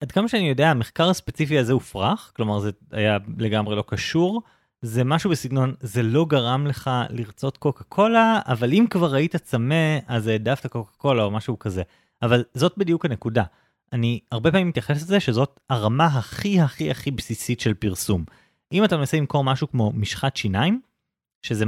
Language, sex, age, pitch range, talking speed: Hebrew, male, 20-39, 115-160 Hz, 170 wpm